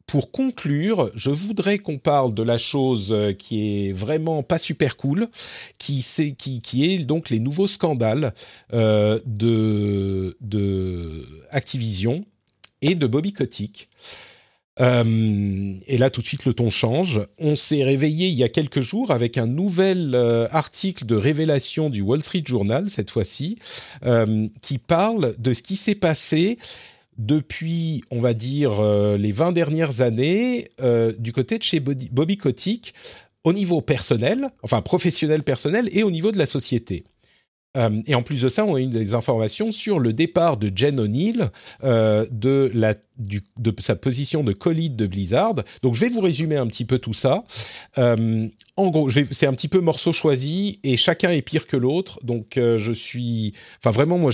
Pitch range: 115-160 Hz